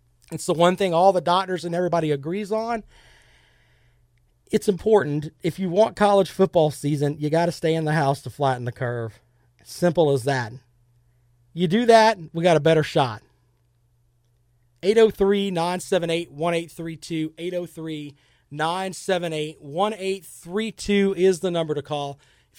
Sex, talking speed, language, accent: male, 140 wpm, English, American